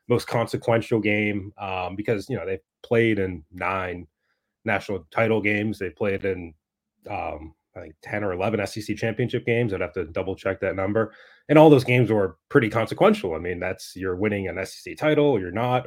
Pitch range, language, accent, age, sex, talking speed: 95-120 Hz, English, American, 30-49, male, 190 wpm